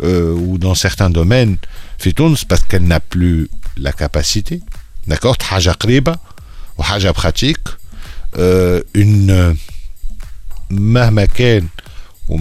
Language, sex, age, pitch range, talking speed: Arabic, male, 50-69, 80-105 Hz, 90 wpm